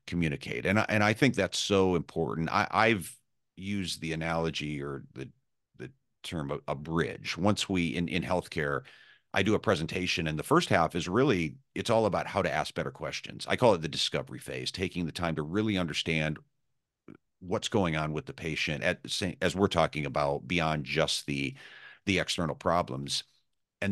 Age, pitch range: 40-59, 75-100 Hz